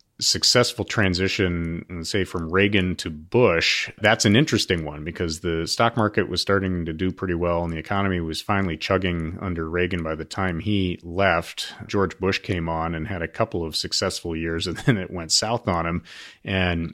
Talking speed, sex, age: 190 wpm, male, 30-49